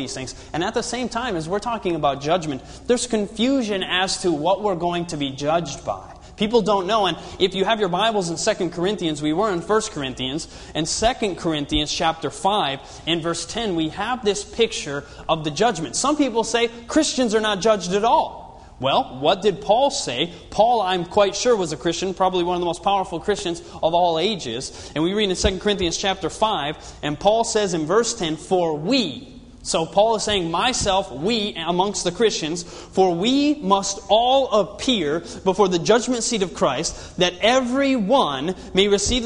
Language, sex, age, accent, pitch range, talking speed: English, male, 30-49, American, 165-215 Hz, 195 wpm